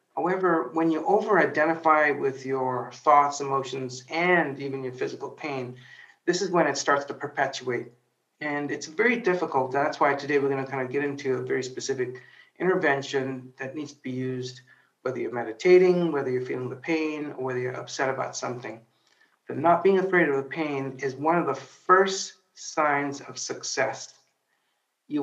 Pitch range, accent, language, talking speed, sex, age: 130-165 Hz, American, English, 170 wpm, male, 50-69